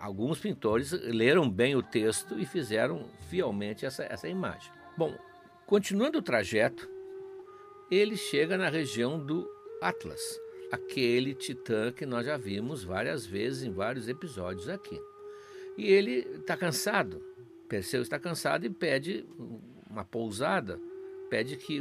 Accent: Brazilian